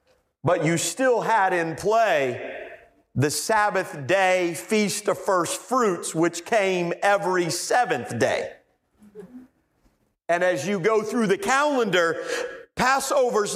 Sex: male